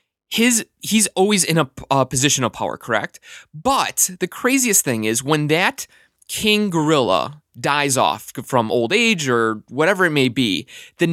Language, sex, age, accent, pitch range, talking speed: English, male, 20-39, American, 135-200 Hz, 160 wpm